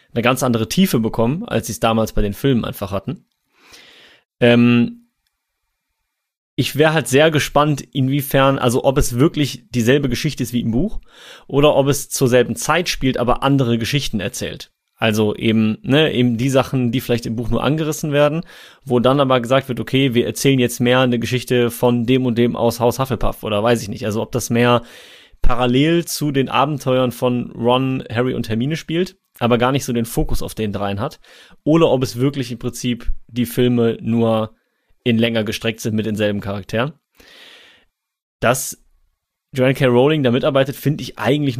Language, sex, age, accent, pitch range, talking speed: German, male, 30-49, German, 115-135 Hz, 185 wpm